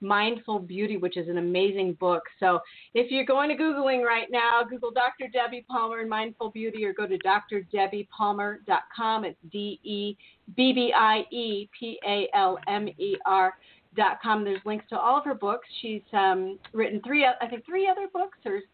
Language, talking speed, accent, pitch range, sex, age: English, 185 wpm, American, 200-250 Hz, female, 40-59